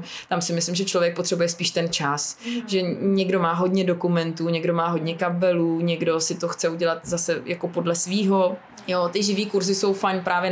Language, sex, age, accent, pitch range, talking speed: Czech, female, 20-39, native, 180-220 Hz, 195 wpm